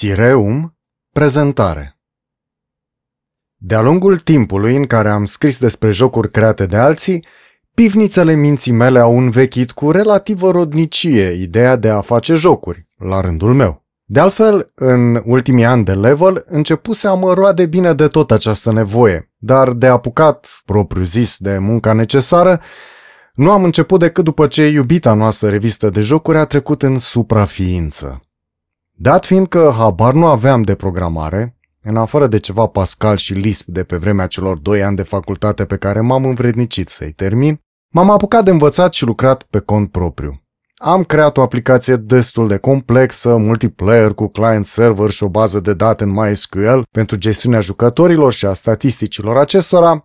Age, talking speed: 30-49, 155 wpm